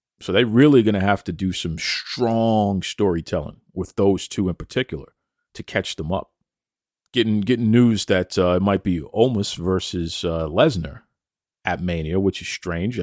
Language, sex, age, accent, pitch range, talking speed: English, male, 40-59, American, 90-110 Hz, 175 wpm